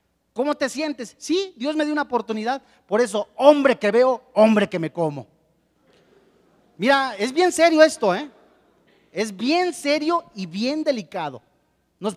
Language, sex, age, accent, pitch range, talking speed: Spanish, male, 40-59, Mexican, 180-275 Hz, 155 wpm